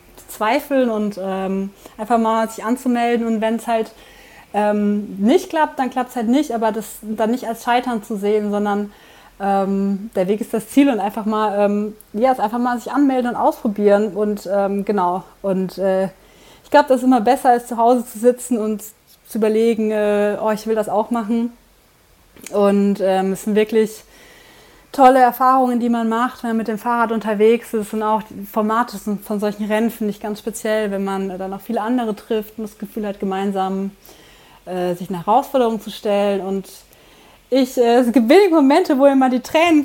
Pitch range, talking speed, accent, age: 205-245 Hz, 190 wpm, German, 30-49